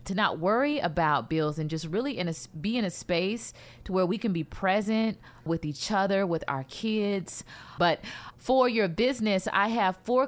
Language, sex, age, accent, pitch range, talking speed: English, female, 30-49, American, 145-190 Hz, 180 wpm